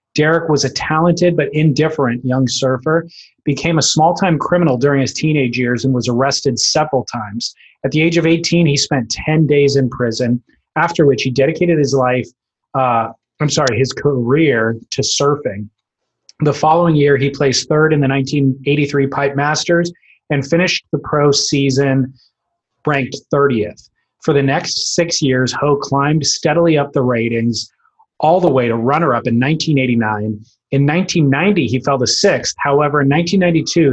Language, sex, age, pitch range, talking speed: English, male, 20-39, 130-155 Hz, 160 wpm